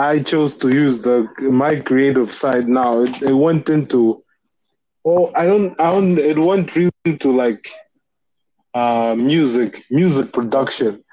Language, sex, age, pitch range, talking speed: English, male, 20-39, 125-155 Hz, 150 wpm